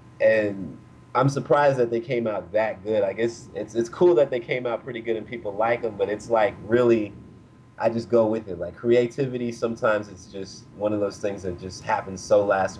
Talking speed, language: 230 wpm, English